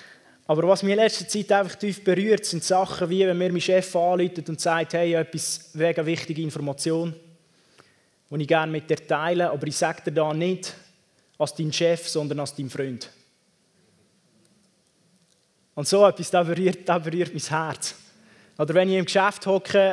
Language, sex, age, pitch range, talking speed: German, male, 20-39, 165-190 Hz, 175 wpm